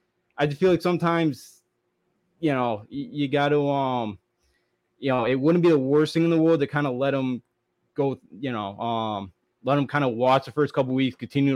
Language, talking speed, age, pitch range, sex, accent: English, 225 wpm, 20-39, 125-155 Hz, male, American